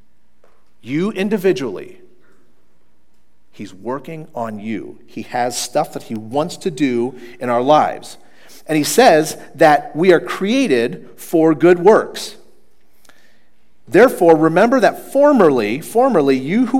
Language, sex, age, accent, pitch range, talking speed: English, male, 40-59, American, 130-195 Hz, 120 wpm